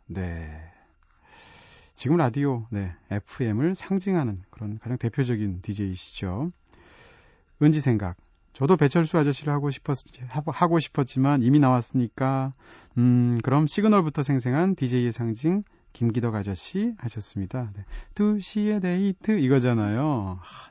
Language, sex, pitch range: Korean, male, 105-155 Hz